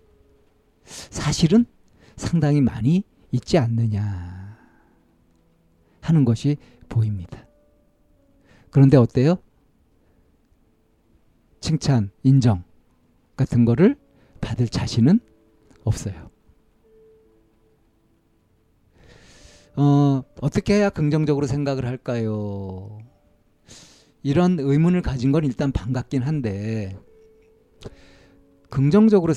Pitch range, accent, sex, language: 110-160 Hz, native, male, Korean